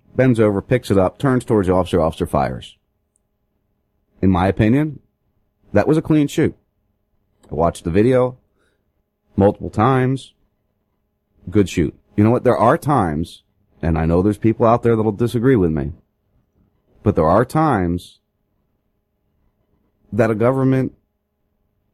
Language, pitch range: English, 90-115 Hz